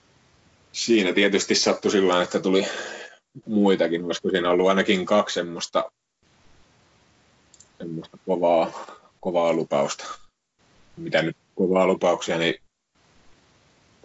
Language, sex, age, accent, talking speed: Finnish, male, 30-49, native, 95 wpm